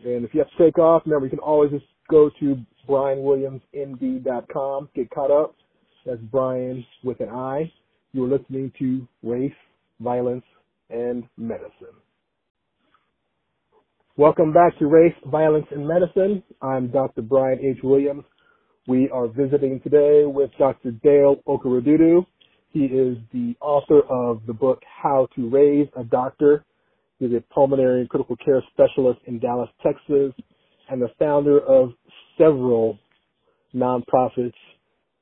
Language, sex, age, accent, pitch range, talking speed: English, male, 40-59, American, 125-145 Hz, 135 wpm